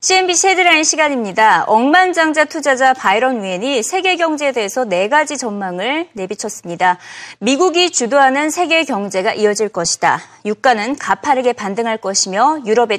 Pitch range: 220-315 Hz